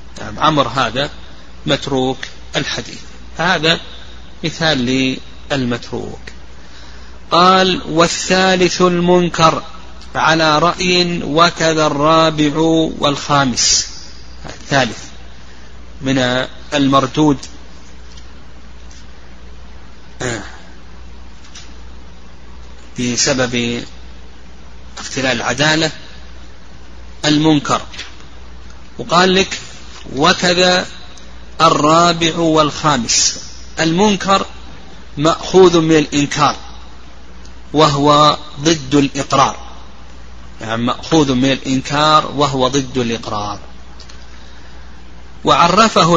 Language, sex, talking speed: Arabic, male, 55 wpm